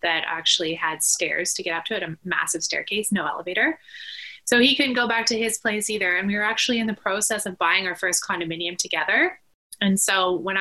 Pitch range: 180-220 Hz